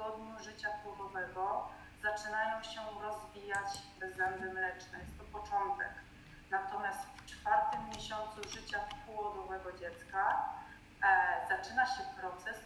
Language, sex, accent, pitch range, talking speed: Polish, female, native, 200-235 Hz, 105 wpm